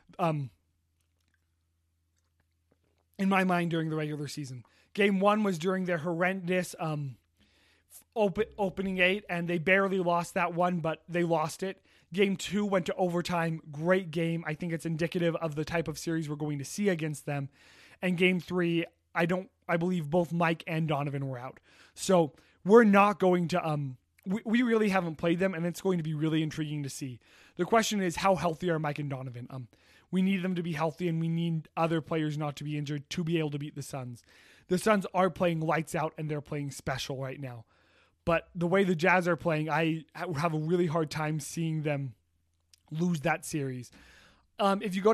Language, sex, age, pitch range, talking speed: English, male, 20-39, 145-185 Hz, 200 wpm